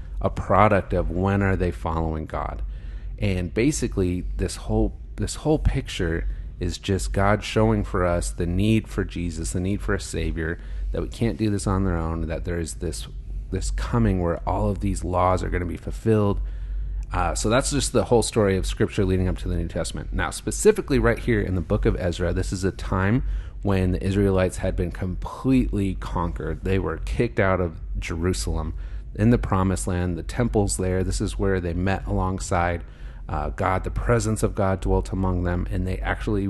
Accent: American